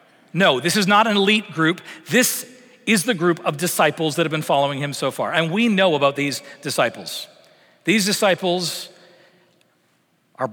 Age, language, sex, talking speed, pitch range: 40-59, English, male, 165 wpm, 160-225 Hz